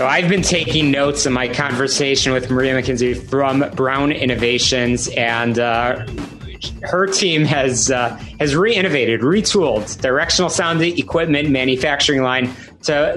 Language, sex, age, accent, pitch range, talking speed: English, male, 30-49, American, 125-155 Hz, 130 wpm